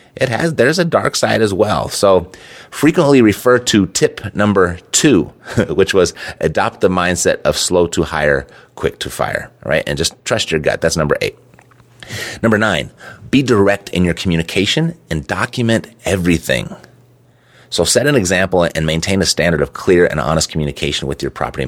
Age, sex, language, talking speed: 30-49, male, English, 170 wpm